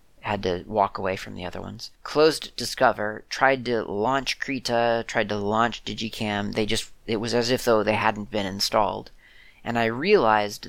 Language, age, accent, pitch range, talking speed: English, 30-49, American, 100-120 Hz, 180 wpm